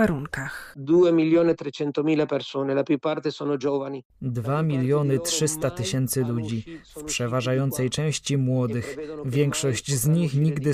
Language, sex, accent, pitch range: Polish, male, native, 130-150 Hz